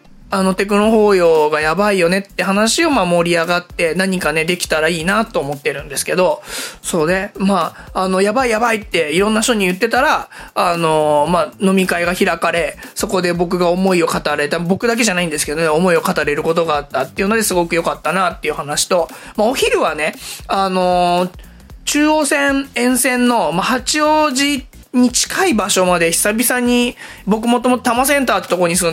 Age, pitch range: 20-39, 175-235 Hz